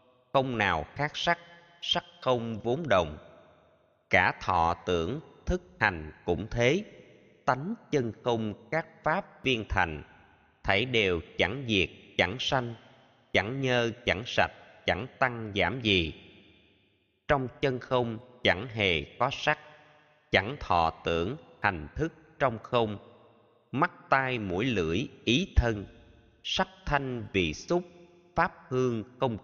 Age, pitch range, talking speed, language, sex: 20-39, 105-150 Hz, 130 wpm, Vietnamese, male